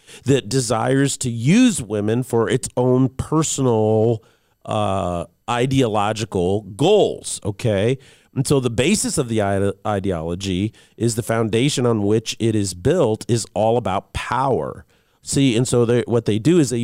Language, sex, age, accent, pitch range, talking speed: English, male, 40-59, American, 100-130 Hz, 145 wpm